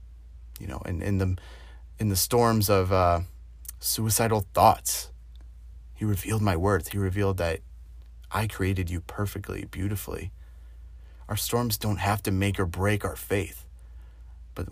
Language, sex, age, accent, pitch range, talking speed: English, male, 30-49, American, 70-105 Hz, 145 wpm